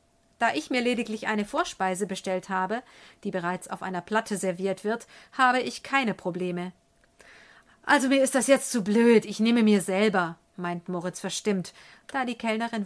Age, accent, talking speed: 50-69, German, 170 wpm